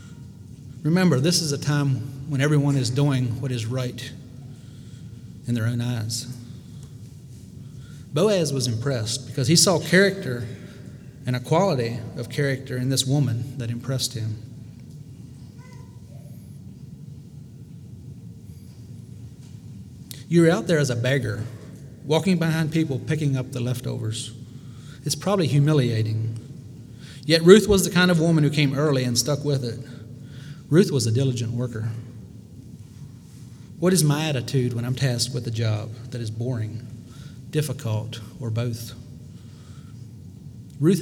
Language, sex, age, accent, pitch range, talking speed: English, male, 30-49, American, 120-150 Hz, 125 wpm